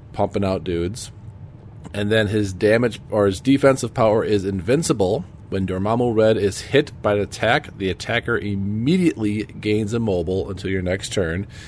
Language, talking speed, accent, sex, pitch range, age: English, 160 wpm, American, male, 90-110 Hz, 40-59